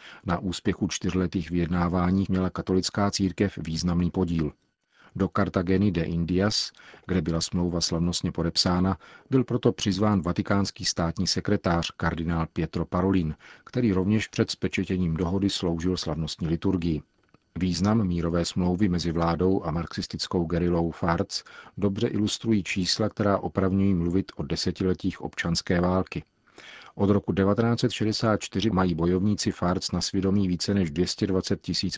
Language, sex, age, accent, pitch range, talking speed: Czech, male, 40-59, native, 85-100 Hz, 125 wpm